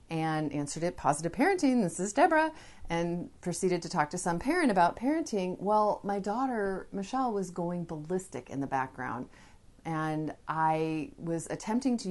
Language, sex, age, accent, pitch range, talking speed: English, female, 30-49, American, 155-190 Hz, 160 wpm